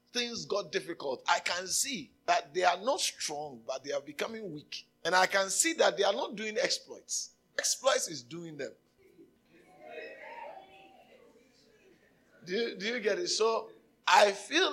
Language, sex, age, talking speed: English, male, 50-69, 155 wpm